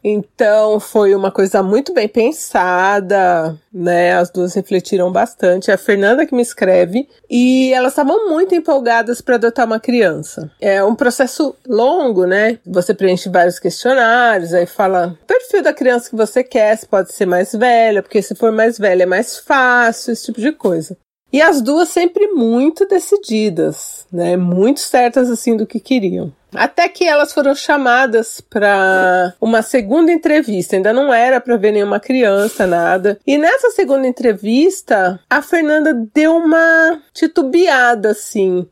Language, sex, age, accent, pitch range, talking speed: Portuguese, female, 30-49, Brazilian, 200-285 Hz, 155 wpm